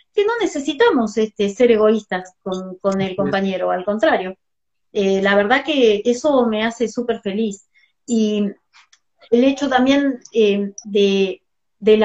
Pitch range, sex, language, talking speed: 200-270 Hz, female, Spanish, 140 wpm